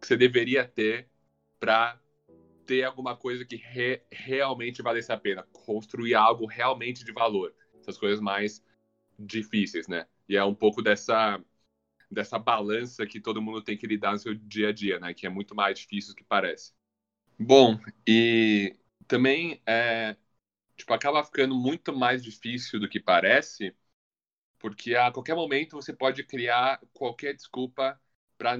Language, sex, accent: Portuguese, male, Brazilian